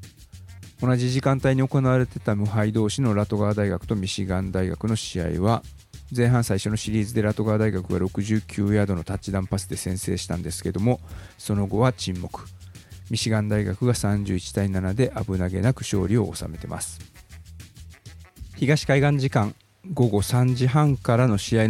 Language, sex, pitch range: Japanese, male, 95-115 Hz